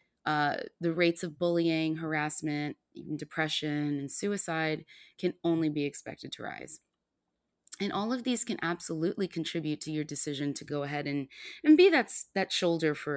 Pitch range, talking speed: 145-215 Hz, 165 wpm